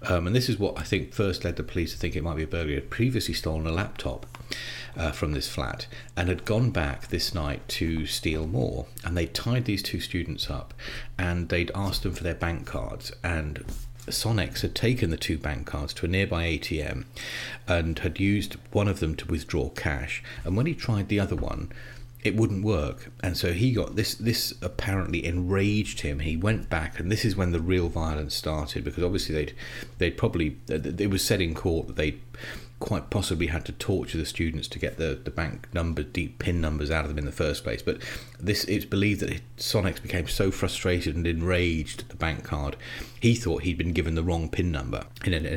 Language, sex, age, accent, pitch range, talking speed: English, male, 40-59, British, 80-105 Hz, 220 wpm